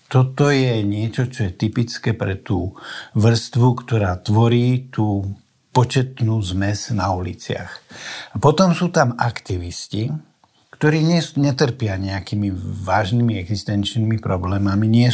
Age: 60-79